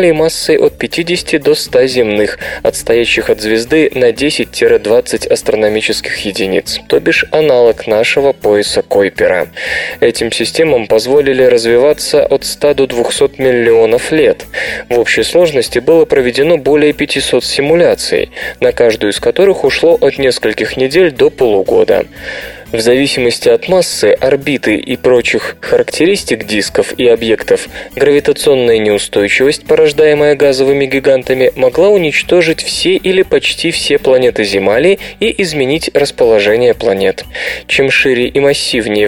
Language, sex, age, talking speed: Russian, male, 20-39, 120 wpm